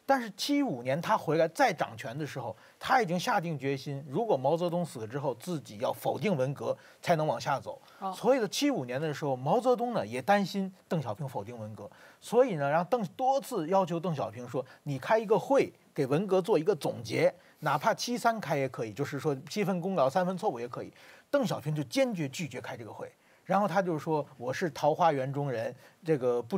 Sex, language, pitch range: male, Chinese, 140-195 Hz